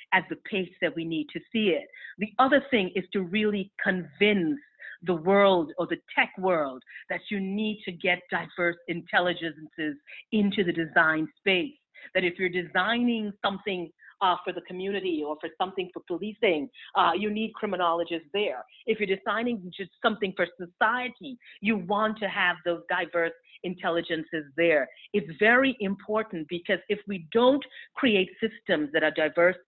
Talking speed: 160 wpm